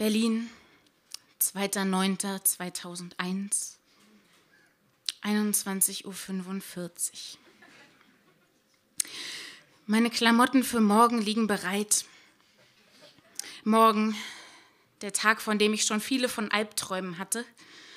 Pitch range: 205-250 Hz